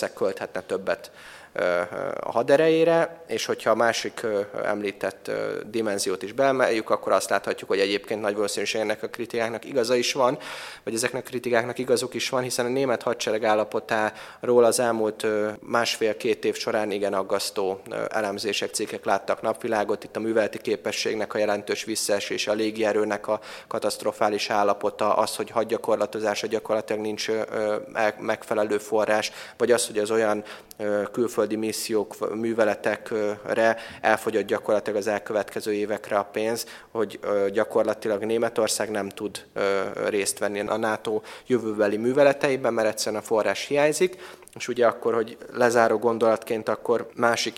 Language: Hungarian